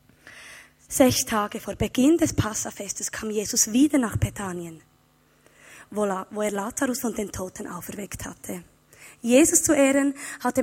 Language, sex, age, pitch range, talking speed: German, female, 20-39, 210-280 Hz, 130 wpm